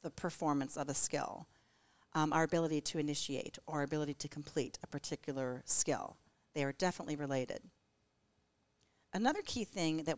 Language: English